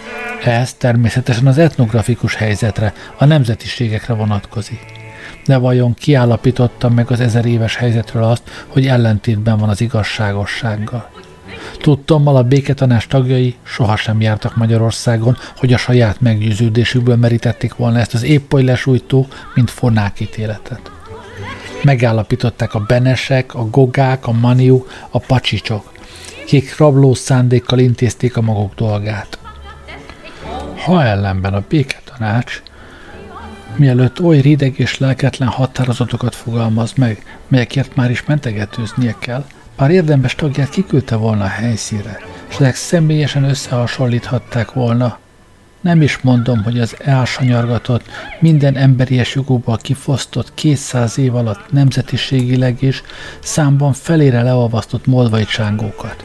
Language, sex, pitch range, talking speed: Hungarian, male, 110-130 Hz, 110 wpm